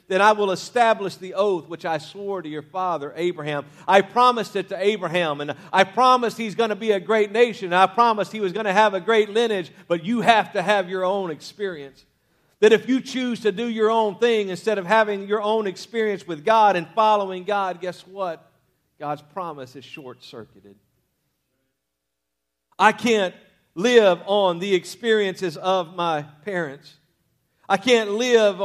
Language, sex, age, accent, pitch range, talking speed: English, male, 50-69, American, 170-210 Hz, 180 wpm